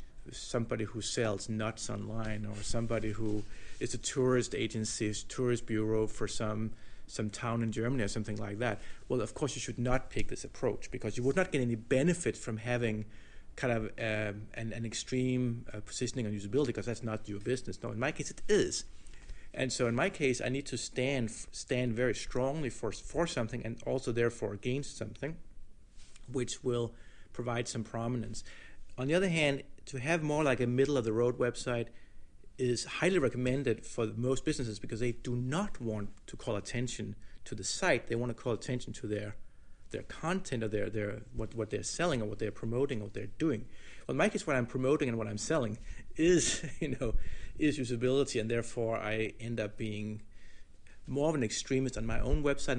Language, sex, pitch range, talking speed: German, male, 105-130 Hz, 195 wpm